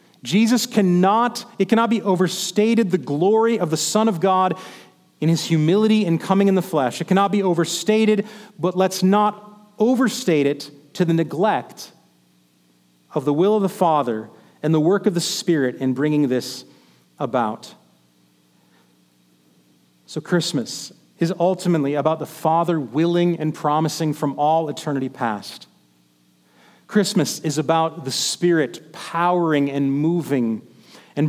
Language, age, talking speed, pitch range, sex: English, 40-59, 140 wpm, 135-190 Hz, male